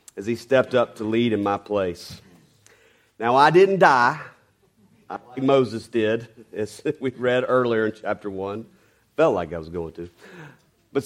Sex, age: male, 40-59